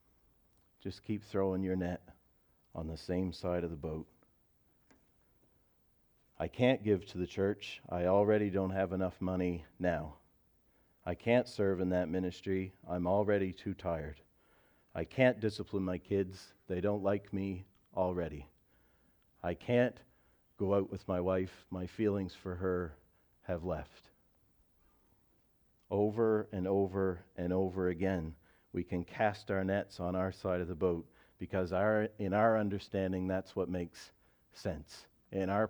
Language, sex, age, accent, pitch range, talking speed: English, male, 40-59, American, 90-100 Hz, 145 wpm